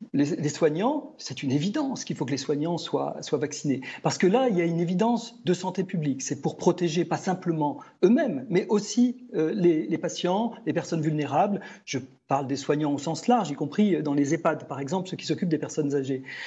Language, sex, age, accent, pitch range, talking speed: French, male, 40-59, French, 160-220 Hz, 220 wpm